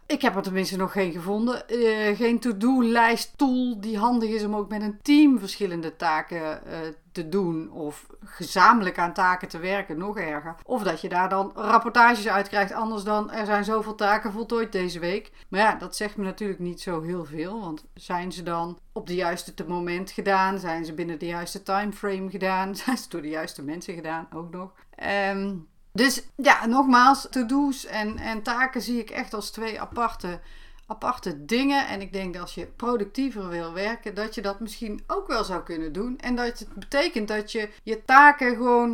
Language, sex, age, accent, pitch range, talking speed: Dutch, female, 40-59, Dutch, 180-240 Hz, 195 wpm